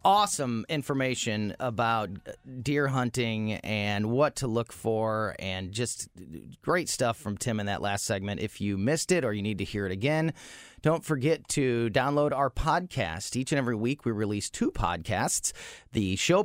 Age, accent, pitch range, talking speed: 30-49, American, 110-150 Hz, 170 wpm